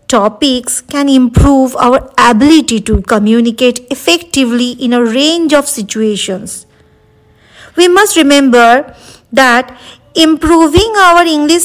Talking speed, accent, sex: 105 wpm, Indian, female